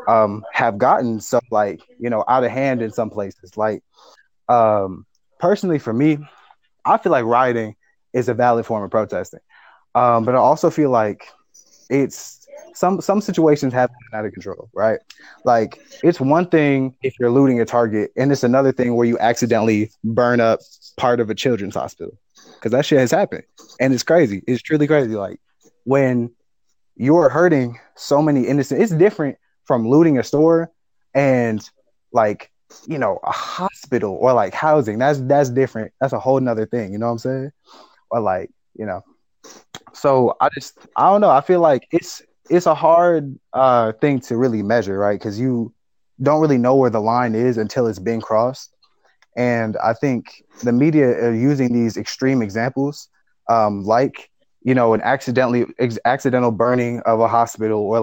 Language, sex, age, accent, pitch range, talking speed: English, male, 20-39, American, 115-140 Hz, 180 wpm